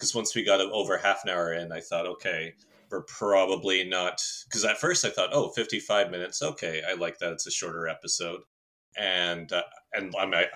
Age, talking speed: 30-49, 200 wpm